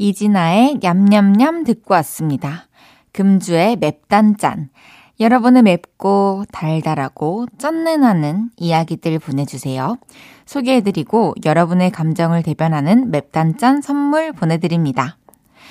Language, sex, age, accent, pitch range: Korean, female, 20-39, native, 165-240 Hz